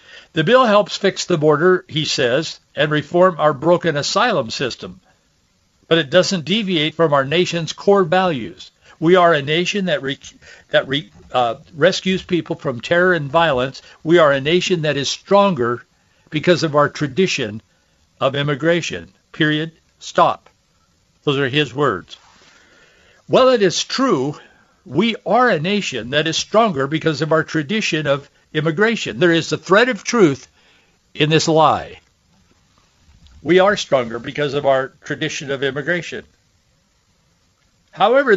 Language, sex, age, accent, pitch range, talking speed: English, male, 60-79, American, 140-180 Hz, 145 wpm